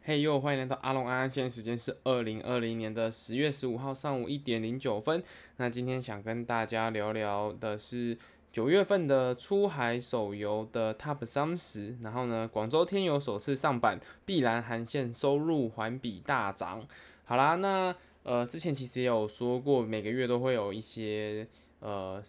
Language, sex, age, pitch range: Chinese, male, 20-39, 110-135 Hz